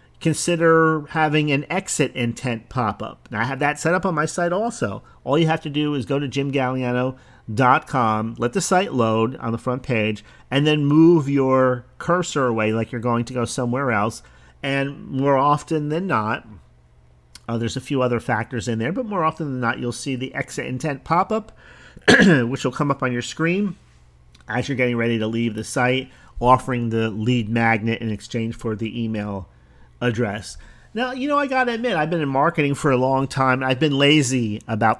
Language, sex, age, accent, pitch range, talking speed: English, male, 40-59, American, 115-150 Hz, 195 wpm